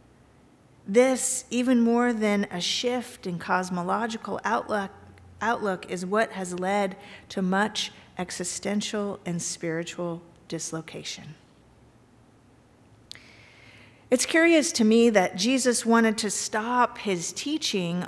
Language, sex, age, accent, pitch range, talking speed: English, female, 50-69, American, 180-230 Hz, 105 wpm